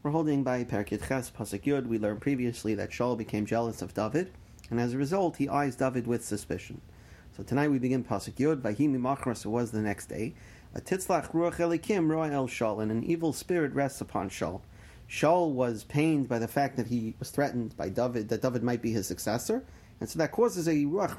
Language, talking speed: English, 210 wpm